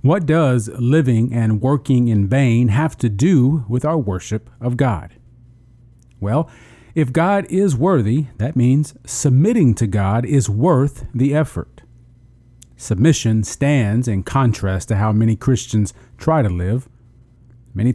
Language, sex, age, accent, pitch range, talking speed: English, male, 40-59, American, 110-135 Hz, 135 wpm